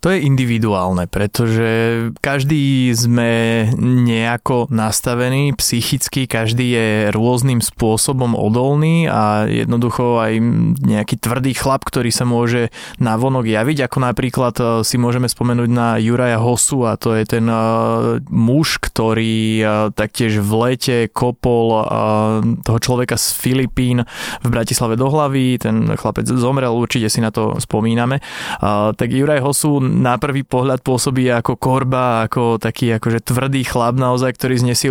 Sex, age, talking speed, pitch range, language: male, 20-39, 130 wpm, 115-135 Hz, Slovak